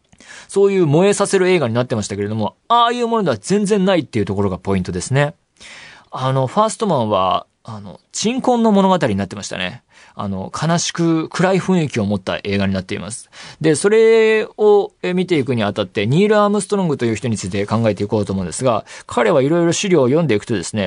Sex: male